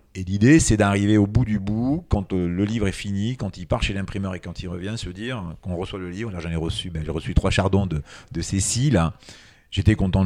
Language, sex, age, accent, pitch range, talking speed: French, male, 40-59, French, 85-105 Hz, 245 wpm